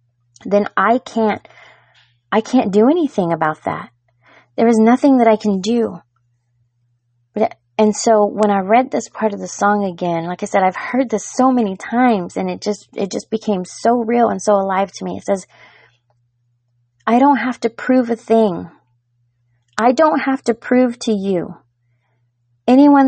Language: English